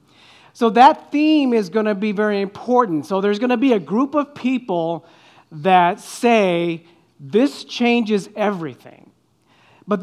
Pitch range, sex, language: 155-220 Hz, male, English